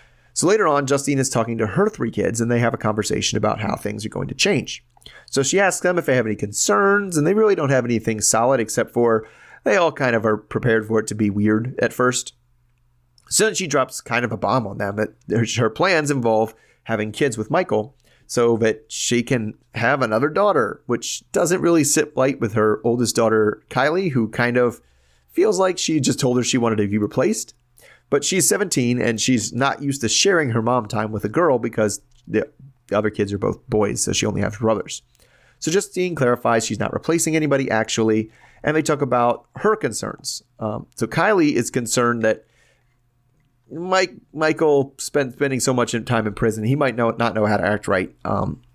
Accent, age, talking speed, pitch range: American, 30-49, 205 wpm, 110-140 Hz